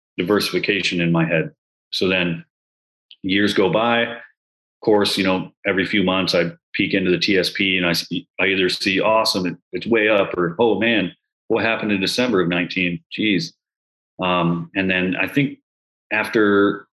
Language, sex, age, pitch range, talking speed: English, male, 30-49, 85-100 Hz, 160 wpm